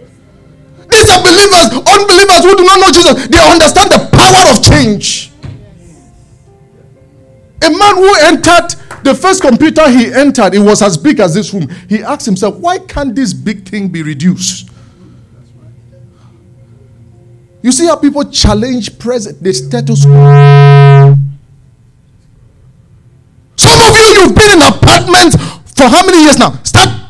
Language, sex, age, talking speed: English, male, 50-69, 140 wpm